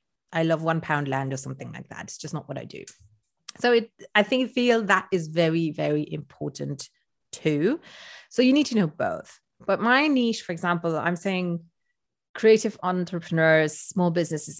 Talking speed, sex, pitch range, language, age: 175 wpm, female, 155-205 Hz, English, 30-49